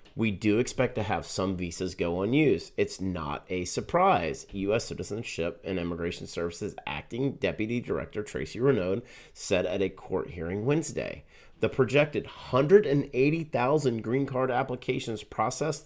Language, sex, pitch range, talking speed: English, male, 95-135 Hz, 135 wpm